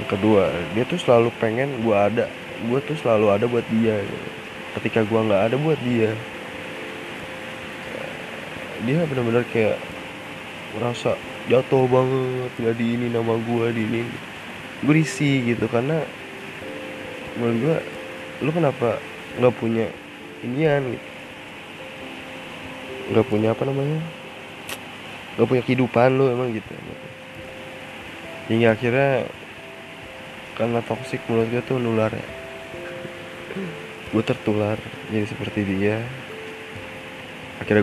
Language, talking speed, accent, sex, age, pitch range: Indonesian, 110 wpm, native, male, 20-39, 100-120 Hz